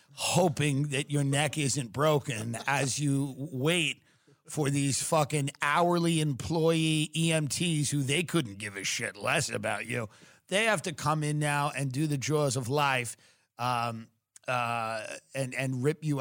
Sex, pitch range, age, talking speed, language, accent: male, 140-190 Hz, 50-69, 155 wpm, English, American